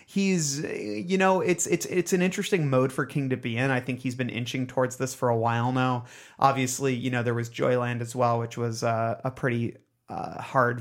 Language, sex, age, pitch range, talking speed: English, male, 30-49, 125-150 Hz, 220 wpm